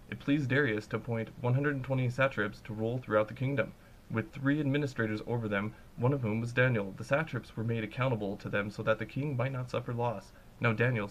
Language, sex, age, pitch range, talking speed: English, male, 20-39, 110-135 Hz, 210 wpm